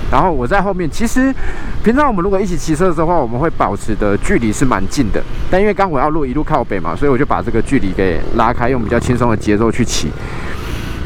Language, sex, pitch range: Chinese, male, 100-145 Hz